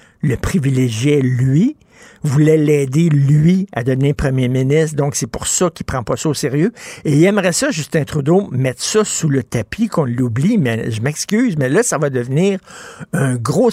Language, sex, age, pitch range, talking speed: French, male, 60-79, 135-180 Hz, 190 wpm